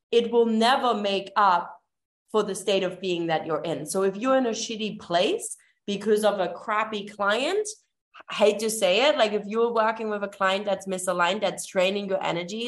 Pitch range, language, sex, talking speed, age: 165-210 Hz, English, female, 205 wpm, 20-39